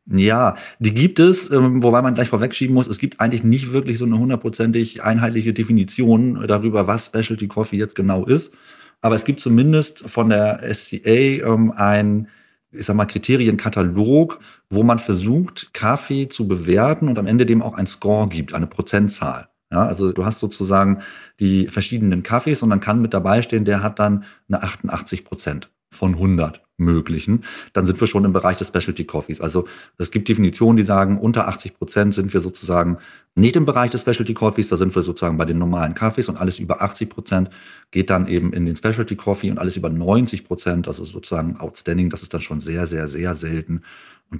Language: German